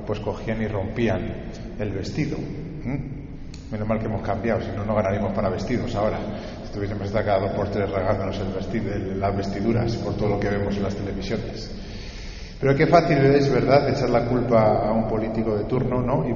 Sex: male